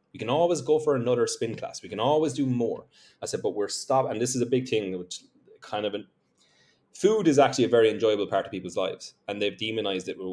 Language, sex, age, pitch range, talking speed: English, male, 30-49, 100-145 Hz, 250 wpm